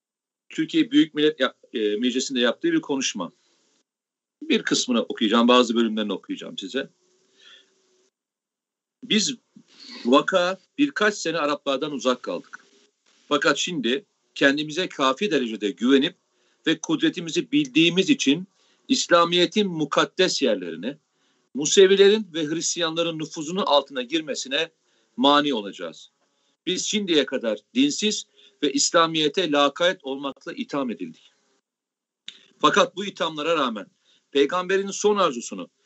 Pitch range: 145-220 Hz